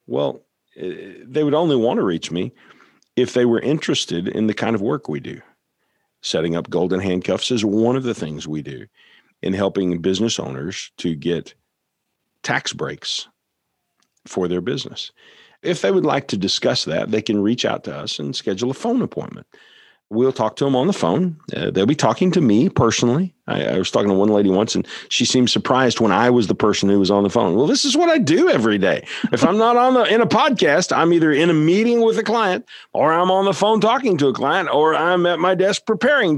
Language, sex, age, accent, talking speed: English, male, 50-69, American, 220 wpm